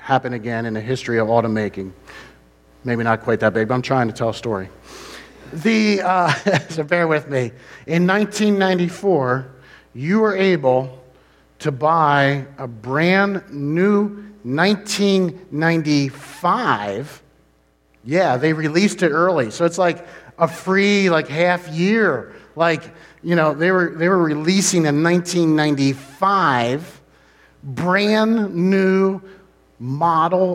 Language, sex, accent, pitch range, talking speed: English, male, American, 125-170 Hz, 120 wpm